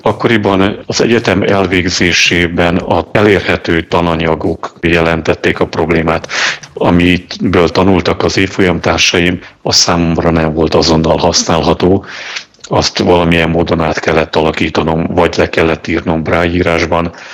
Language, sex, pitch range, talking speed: Hungarian, male, 80-90 Hz, 110 wpm